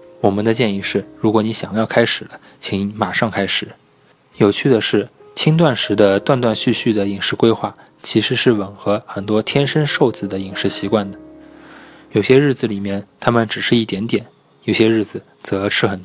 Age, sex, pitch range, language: 20-39, male, 100-120 Hz, Chinese